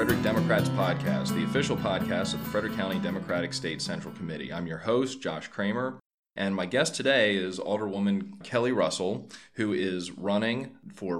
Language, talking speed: English, 165 wpm